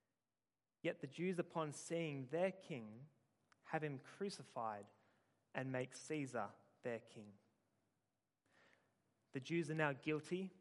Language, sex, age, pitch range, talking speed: English, male, 20-39, 125-160 Hz, 115 wpm